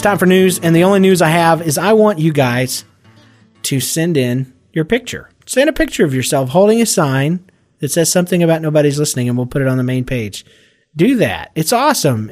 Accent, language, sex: American, English, male